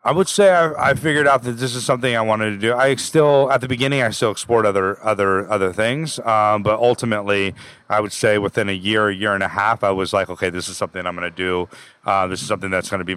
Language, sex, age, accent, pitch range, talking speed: English, male, 30-49, American, 95-115 Hz, 275 wpm